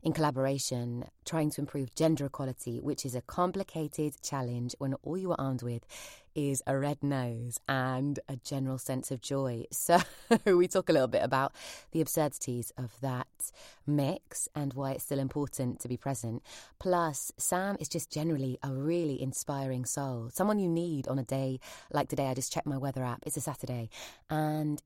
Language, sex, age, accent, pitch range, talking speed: English, female, 20-39, British, 130-160 Hz, 180 wpm